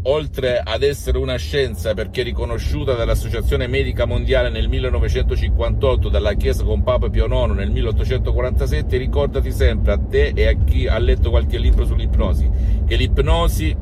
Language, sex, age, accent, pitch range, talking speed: Italian, male, 50-69, native, 70-90 Hz, 150 wpm